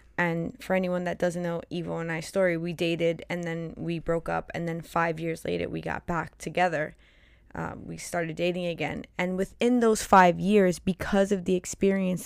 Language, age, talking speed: English, 20-39, 195 wpm